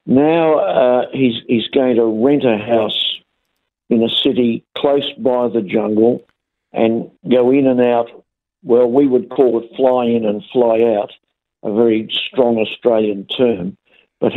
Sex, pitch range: male, 115-145 Hz